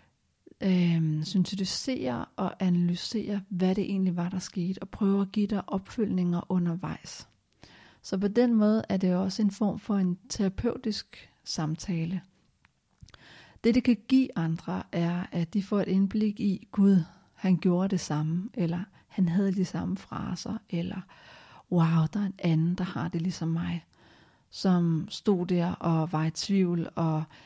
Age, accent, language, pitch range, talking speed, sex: 40-59, native, Danish, 175-195 Hz, 155 wpm, female